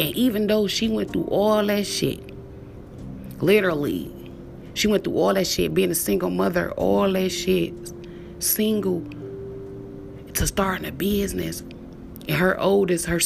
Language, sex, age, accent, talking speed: English, female, 30-49, American, 145 wpm